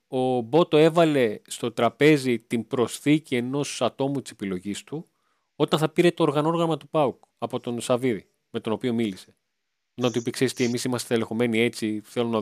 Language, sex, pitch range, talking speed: Greek, male, 115-145 Hz, 175 wpm